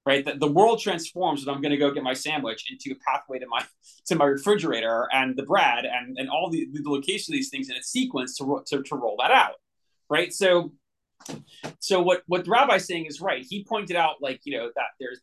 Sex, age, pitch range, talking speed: male, 30-49, 145-205 Hz, 235 wpm